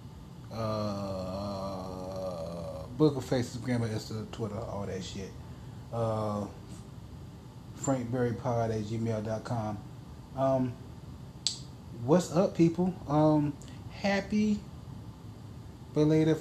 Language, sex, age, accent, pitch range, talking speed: English, male, 30-49, American, 110-140 Hz, 75 wpm